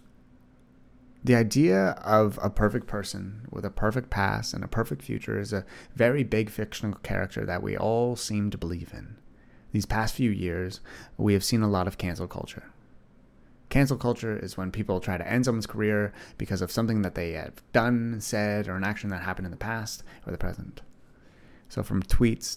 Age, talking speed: 30-49, 190 wpm